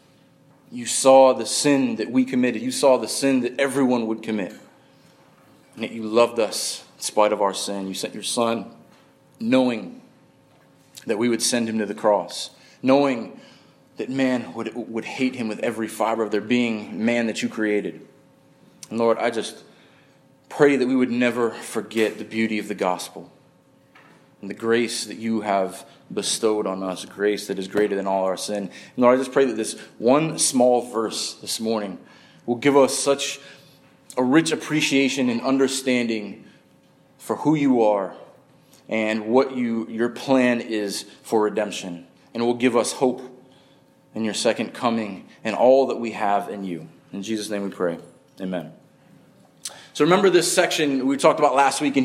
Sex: male